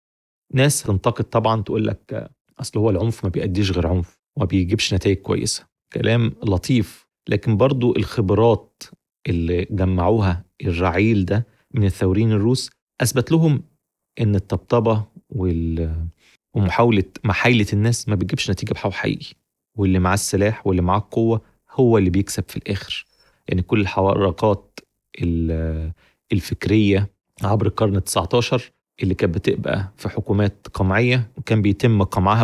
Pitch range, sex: 95-115 Hz, male